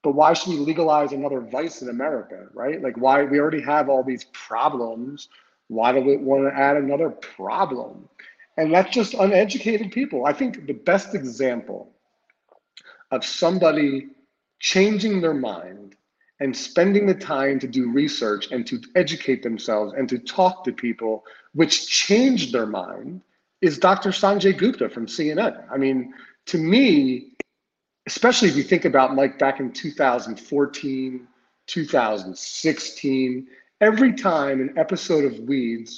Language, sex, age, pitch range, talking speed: English, male, 40-59, 130-190 Hz, 145 wpm